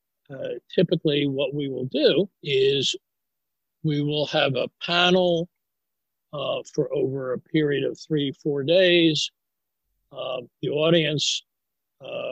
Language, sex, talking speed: English, male, 120 wpm